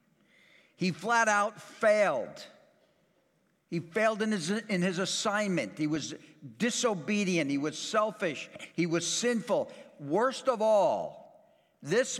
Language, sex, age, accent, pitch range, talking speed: English, male, 60-79, American, 145-240 Hz, 120 wpm